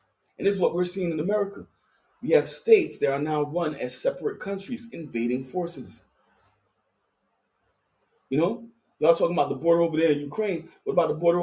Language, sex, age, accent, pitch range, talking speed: English, male, 30-49, American, 145-220 Hz, 185 wpm